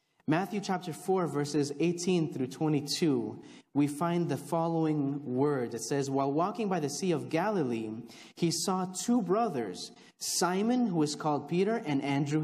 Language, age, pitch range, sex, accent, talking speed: English, 30-49, 145-215 Hz, male, American, 155 wpm